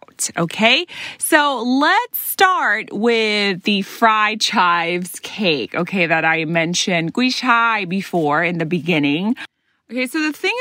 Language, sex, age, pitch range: Thai, female, 30-49, 175-240 Hz